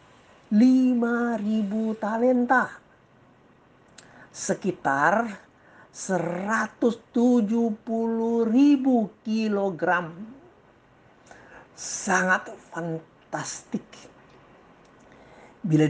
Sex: male